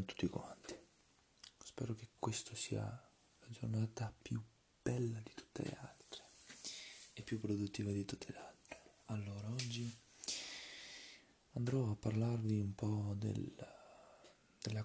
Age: 20-39